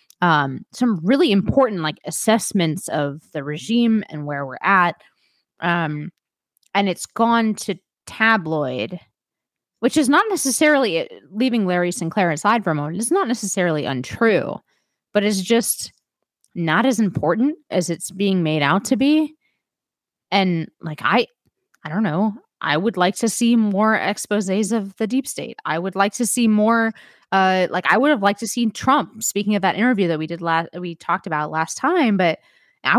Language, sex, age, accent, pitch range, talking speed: English, female, 20-39, American, 170-230 Hz, 170 wpm